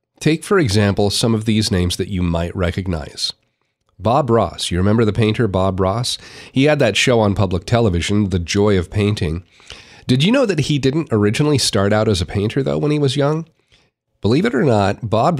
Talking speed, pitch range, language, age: 205 wpm, 95-120 Hz, English, 40-59